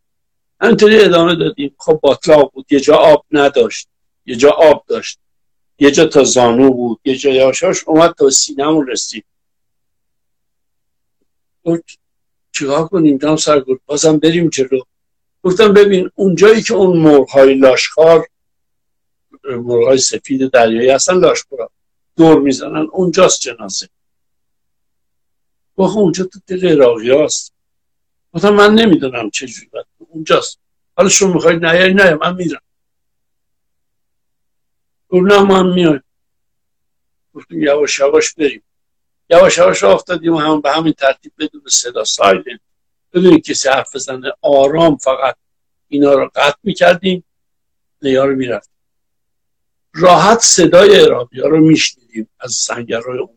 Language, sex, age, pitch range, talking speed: Persian, male, 60-79, 140-195 Hz, 115 wpm